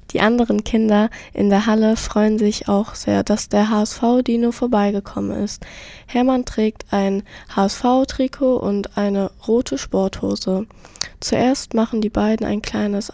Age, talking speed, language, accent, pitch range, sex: 10-29, 135 wpm, German, German, 200-235 Hz, female